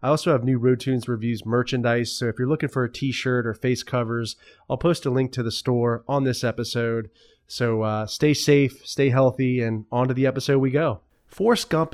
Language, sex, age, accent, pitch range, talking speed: English, male, 30-49, American, 110-135 Hz, 215 wpm